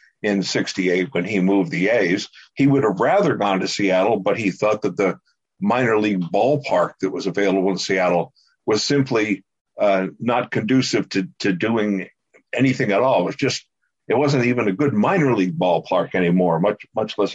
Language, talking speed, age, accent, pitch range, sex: English, 185 wpm, 50-69, American, 100-130 Hz, male